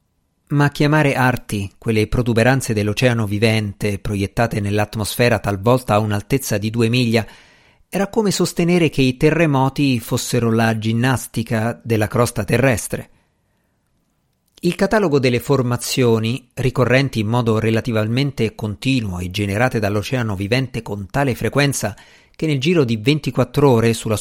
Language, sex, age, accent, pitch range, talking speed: Italian, male, 50-69, native, 110-140 Hz, 125 wpm